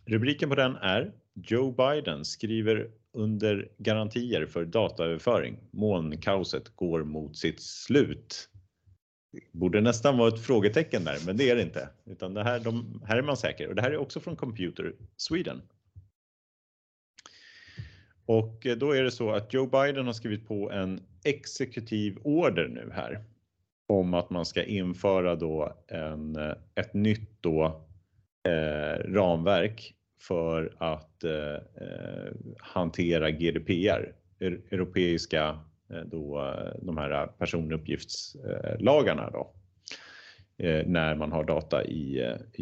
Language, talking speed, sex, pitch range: Swedish, 130 wpm, male, 85-110 Hz